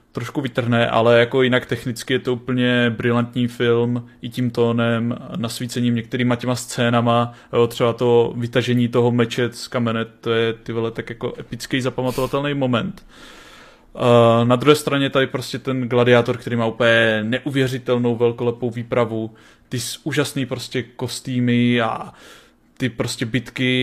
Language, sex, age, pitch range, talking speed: Czech, male, 20-39, 120-130 Hz, 135 wpm